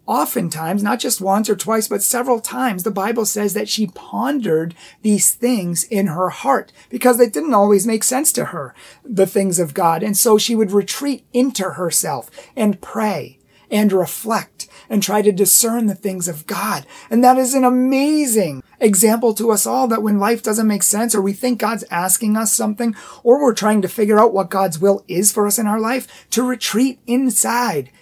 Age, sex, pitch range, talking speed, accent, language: 40-59, male, 180-230 Hz, 195 wpm, American, English